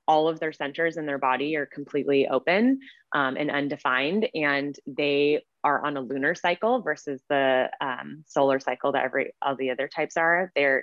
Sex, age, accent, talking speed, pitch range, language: female, 20-39, American, 185 wpm, 135-160 Hz, English